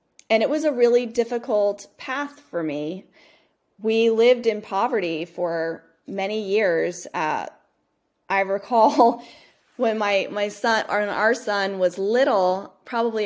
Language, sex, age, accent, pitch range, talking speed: English, female, 20-39, American, 180-210 Hz, 130 wpm